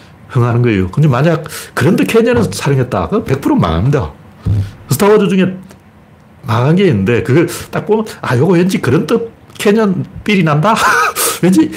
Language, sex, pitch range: Korean, male, 105-160 Hz